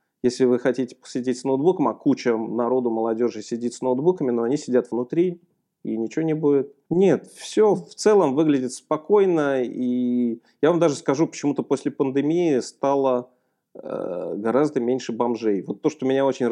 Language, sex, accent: Russian, male, native